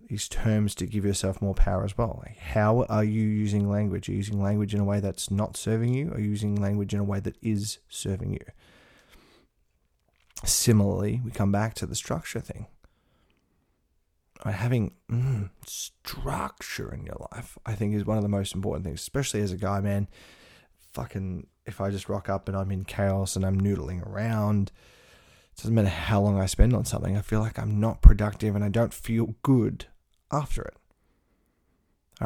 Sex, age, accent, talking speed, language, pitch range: male, 20-39, Australian, 190 wpm, English, 95-110 Hz